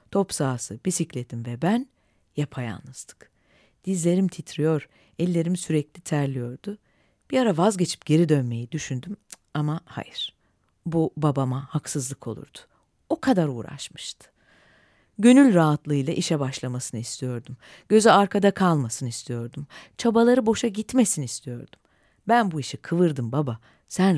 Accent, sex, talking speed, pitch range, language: native, female, 110 wpm, 140-210 Hz, Turkish